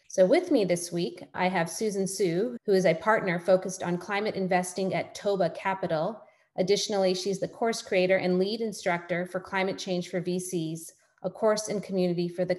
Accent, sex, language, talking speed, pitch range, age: American, female, English, 185 wpm, 180-205 Hz, 30-49